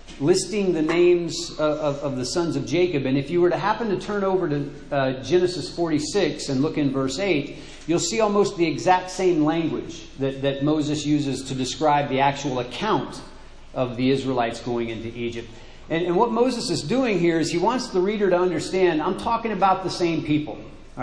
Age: 40-59